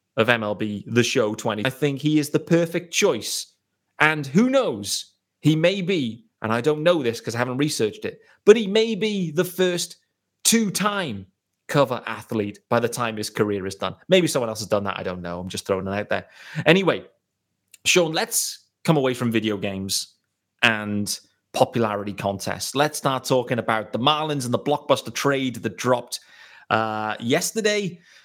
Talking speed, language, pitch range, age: 180 wpm, English, 110-170 Hz, 30-49